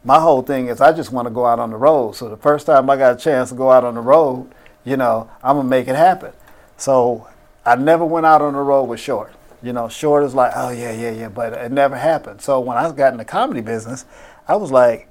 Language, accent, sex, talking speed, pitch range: English, American, male, 275 wpm, 125-175 Hz